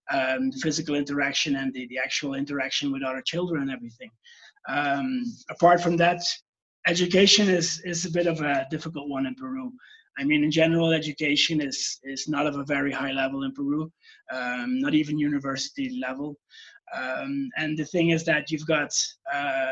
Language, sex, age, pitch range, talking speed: English, male, 20-39, 140-220 Hz, 175 wpm